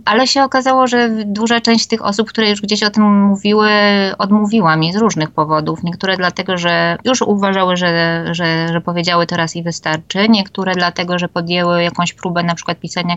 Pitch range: 170-210 Hz